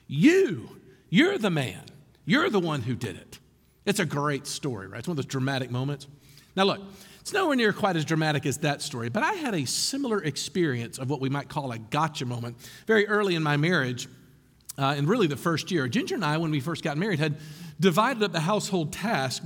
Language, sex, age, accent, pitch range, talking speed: English, male, 50-69, American, 145-195 Hz, 220 wpm